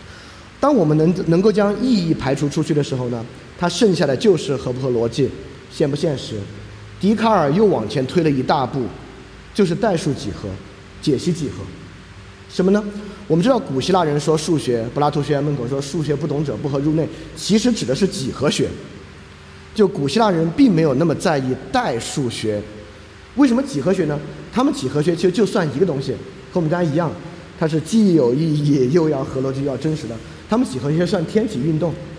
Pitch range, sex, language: 130-180 Hz, male, Chinese